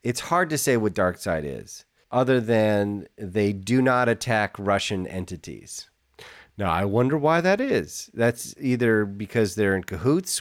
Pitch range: 100-135 Hz